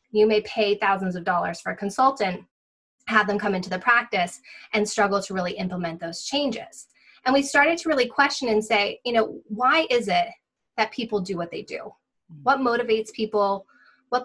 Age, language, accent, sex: 20-39, English, American, female